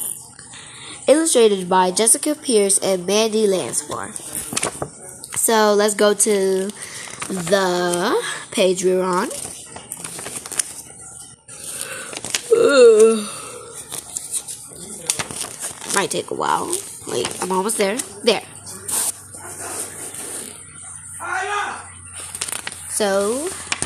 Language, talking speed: English, 65 wpm